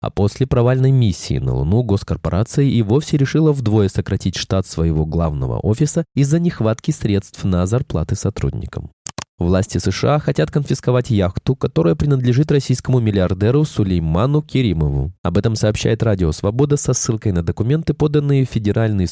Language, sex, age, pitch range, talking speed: Russian, male, 20-39, 95-140 Hz, 140 wpm